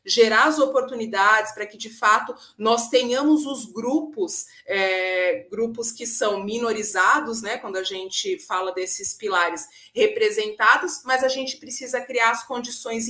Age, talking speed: 30-49, 140 wpm